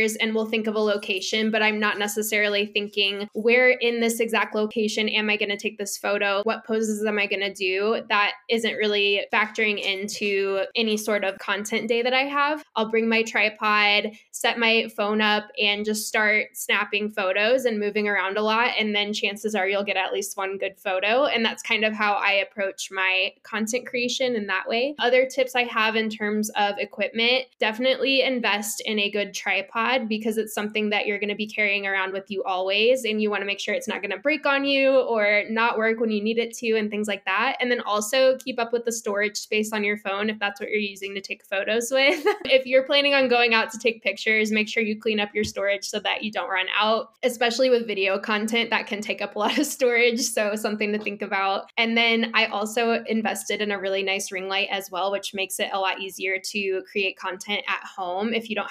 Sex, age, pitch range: female, 10-29, 200-230 Hz